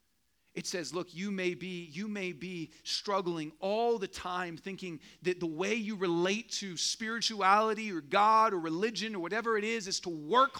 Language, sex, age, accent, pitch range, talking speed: English, male, 40-59, American, 160-220 Hz, 170 wpm